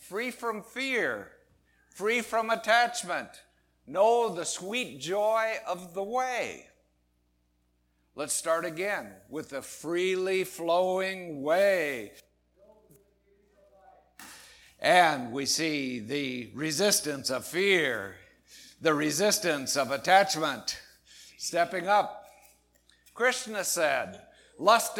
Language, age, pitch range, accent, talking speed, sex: English, 60-79, 145-210 Hz, American, 90 wpm, male